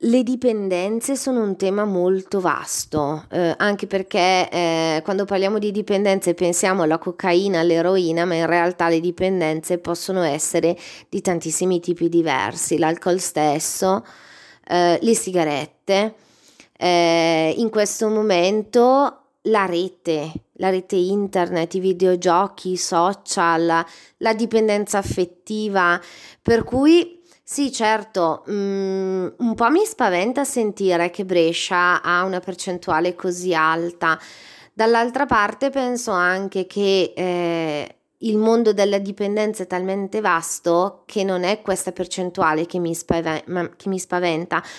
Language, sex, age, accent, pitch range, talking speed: Italian, female, 30-49, native, 170-210 Hz, 120 wpm